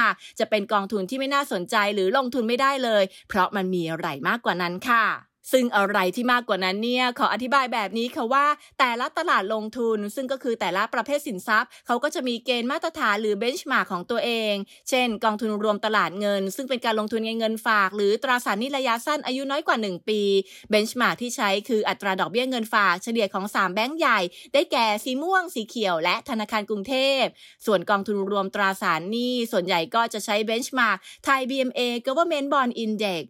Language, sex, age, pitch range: English, female, 20-39, 200-250 Hz